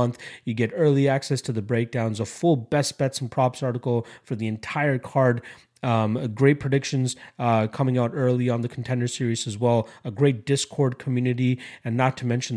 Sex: male